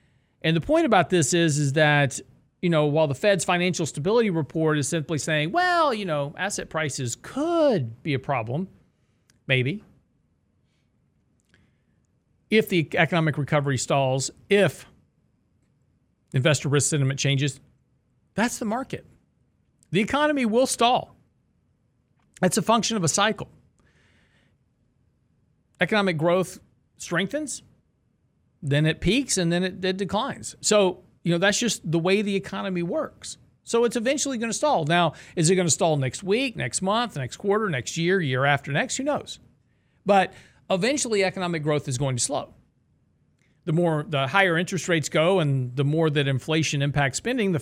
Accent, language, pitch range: American, English, 145-220 Hz